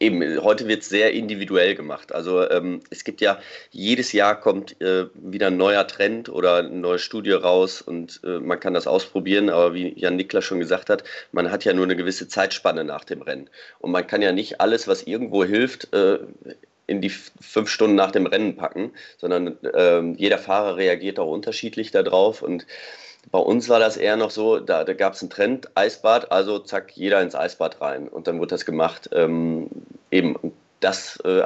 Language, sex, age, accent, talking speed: German, male, 30-49, German, 195 wpm